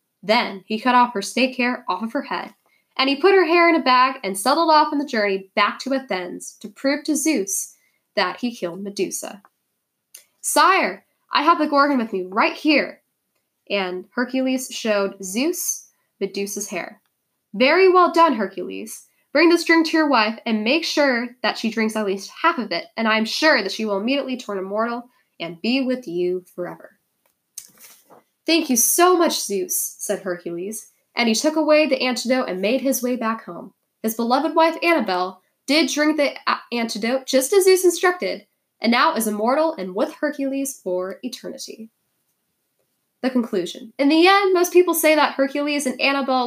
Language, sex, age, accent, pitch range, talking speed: English, female, 10-29, American, 210-300 Hz, 180 wpm